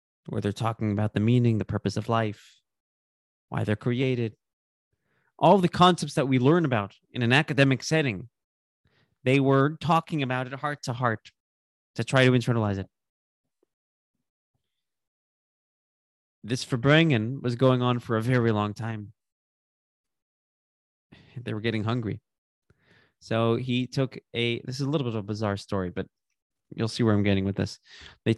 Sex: male